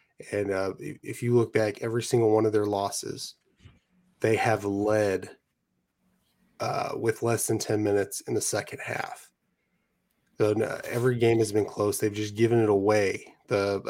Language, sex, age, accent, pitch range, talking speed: English, male, 20-39, American, 105-115 Hz, 170 wpm